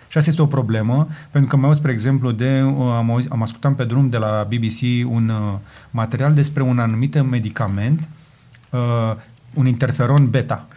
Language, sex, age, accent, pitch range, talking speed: Romanian, male, 30-49, native, 120-145 Hz, 165 wpm